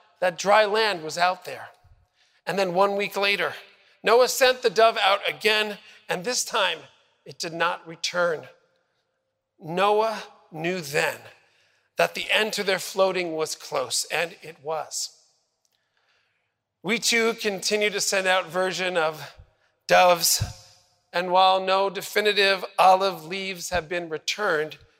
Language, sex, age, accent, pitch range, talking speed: English, male, 40-59, American, 175-210 Hz, 135 wpm